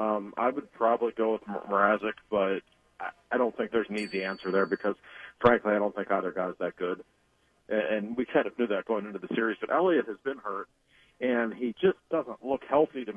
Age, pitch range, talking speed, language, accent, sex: 40-59, 105-140 Hz, 225 wpm, English, American, male